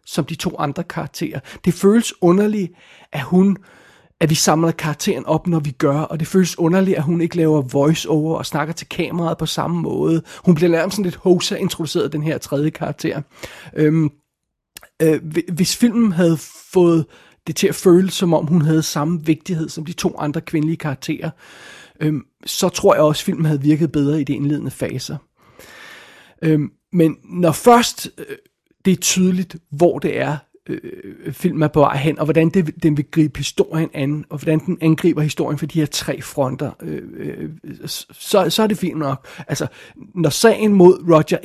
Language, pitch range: Danish, 150-175 Hz